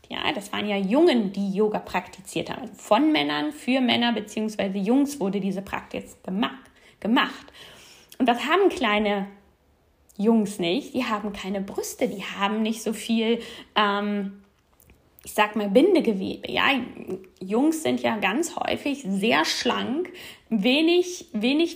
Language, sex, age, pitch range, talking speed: German, female, 20-39, 210-290 Hz, 135 wpm